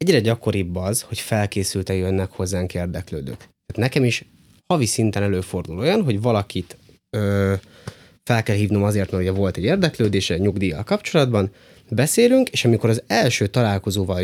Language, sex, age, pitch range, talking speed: Hungarian, male, 20-39, 95-120 Hz, 150 wpm